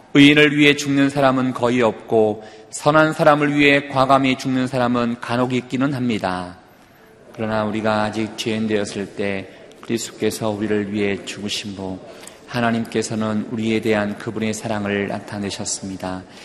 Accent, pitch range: native, 105-125 Hz